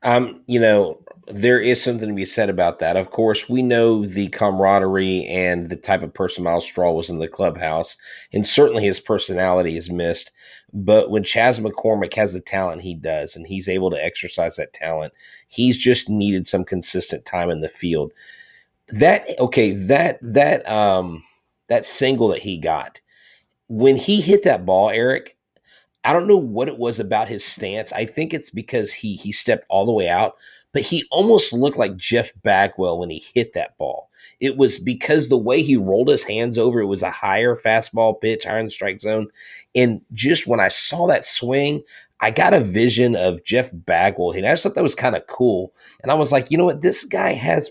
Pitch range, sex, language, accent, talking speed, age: 95-125 Hz, male, English, American, 200 wpm, 30-49